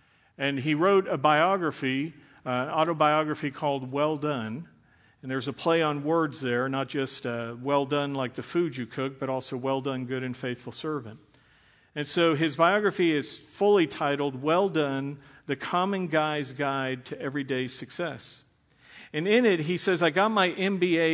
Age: 50-69